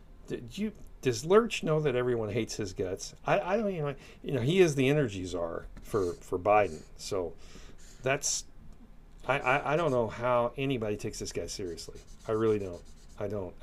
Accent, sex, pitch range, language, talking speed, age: American, male, 95-135 Hz, English, 180 wpm, 40-59